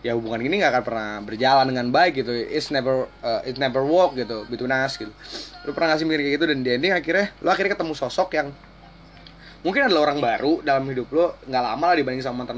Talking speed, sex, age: 225 wpm, male, 20-39